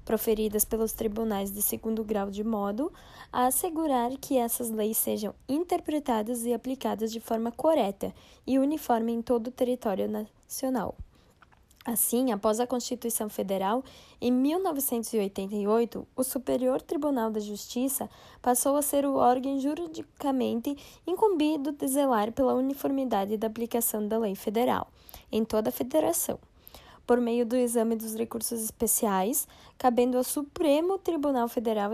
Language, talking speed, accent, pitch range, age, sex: Portuguese, 135 wpm, Brazilian, 225-275 Hz, 10-29, female